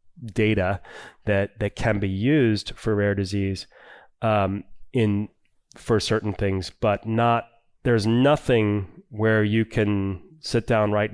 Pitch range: 100-120 Hz